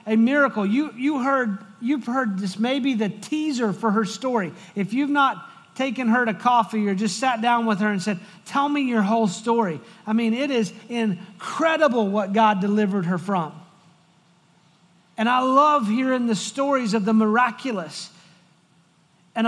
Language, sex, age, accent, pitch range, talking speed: English, male, 40-59, American, 170-225 Hz, 165 wpm